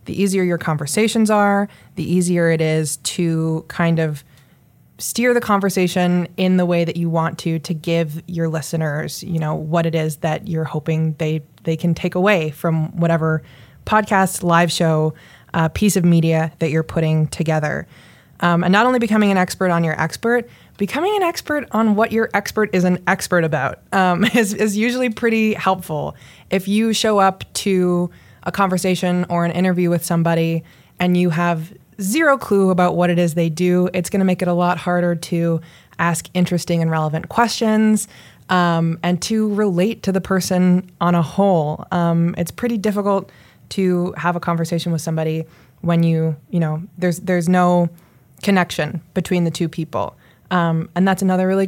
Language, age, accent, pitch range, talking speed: English, 20-39, American, 165-195 Hz, 180 wpm